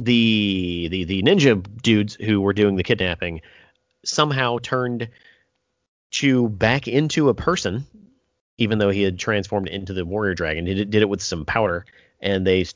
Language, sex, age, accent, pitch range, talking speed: English, male, 30-49, American, 90-120 Hz, 160 wpm